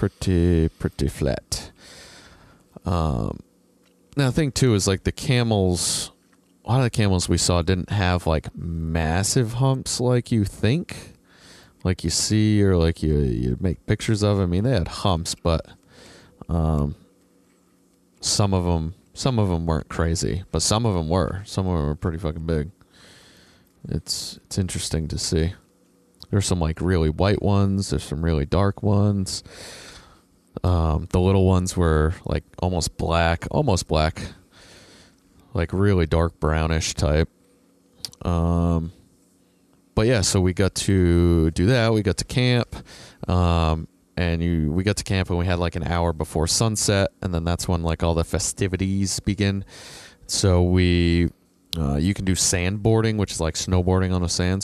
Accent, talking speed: American, 160 wpm